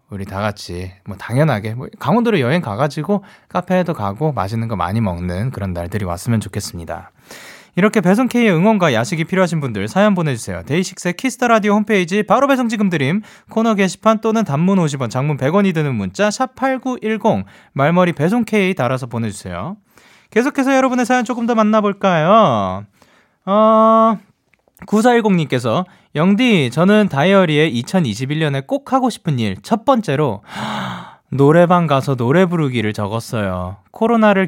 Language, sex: Korean, male